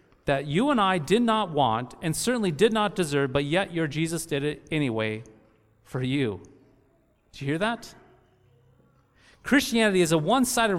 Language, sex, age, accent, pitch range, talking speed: English, male, 40-59, American, 135-215 Hz, 160 wpm